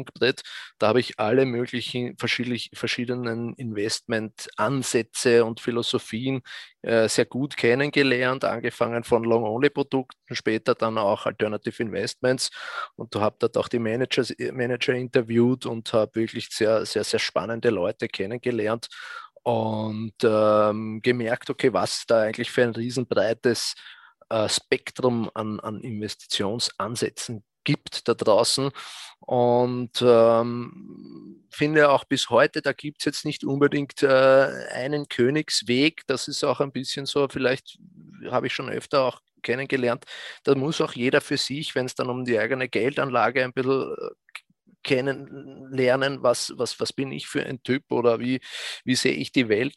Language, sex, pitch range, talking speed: German, male, 115-135 Hz, 145 wpm